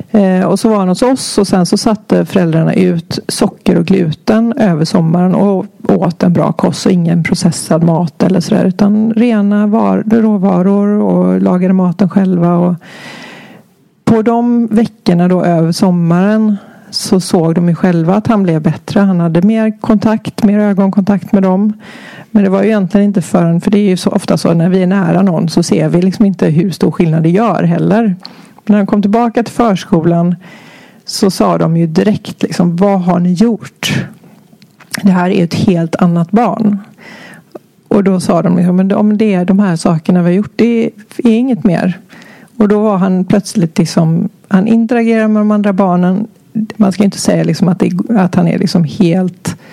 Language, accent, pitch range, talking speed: Swedish, native, 180-210 Hz, 185 wpm